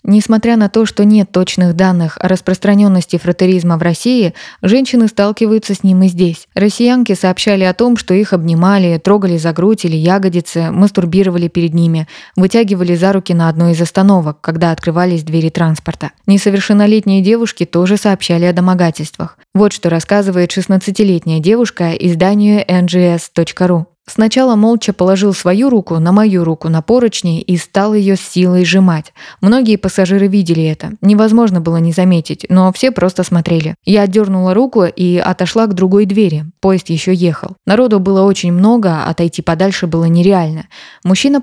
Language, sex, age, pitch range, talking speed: Russian, female, 20-39, 175-205 Hz, 150 wpm